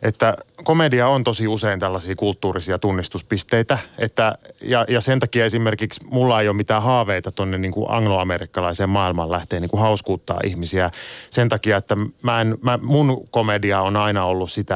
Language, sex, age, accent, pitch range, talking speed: Finnish, male, 30-49, native, 95-115 Hz, 160 wpm